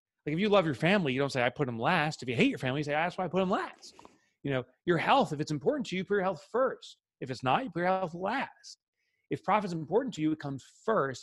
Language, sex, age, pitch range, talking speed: English, male, 30-49, 125-160 Hz, 295 wpm